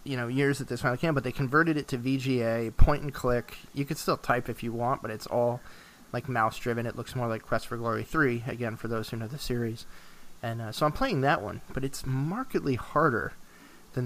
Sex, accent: male, American